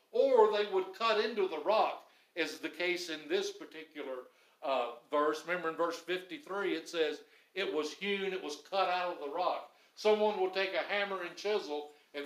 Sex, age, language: male, 60-79, English